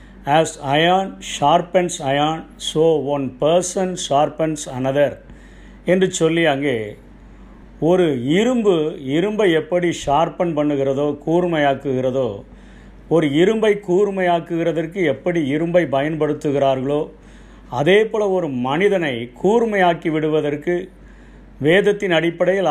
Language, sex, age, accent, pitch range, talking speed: Tamil, male, 50-69, native, 145-180 Hz, 80 wpm